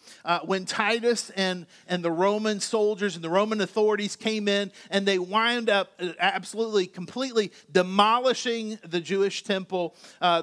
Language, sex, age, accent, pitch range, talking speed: English, male, 40-59, American, 195-235 Hz, 145 wpm